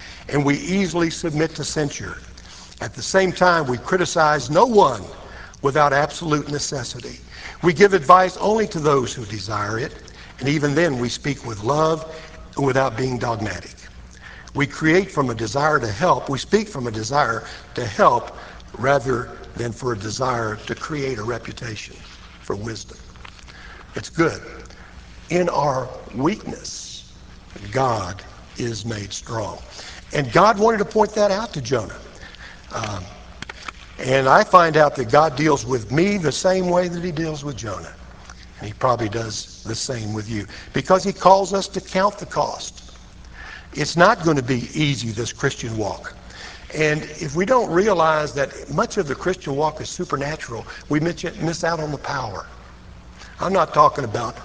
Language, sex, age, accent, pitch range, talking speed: English, male, 60-79, American, 115-165 Hz, 160 wpm